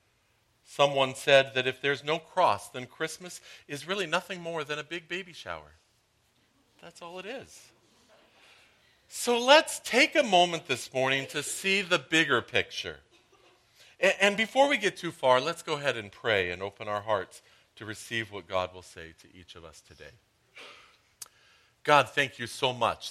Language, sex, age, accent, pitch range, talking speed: English, male, 50-69, American, 105-145 Hz, 170 wpm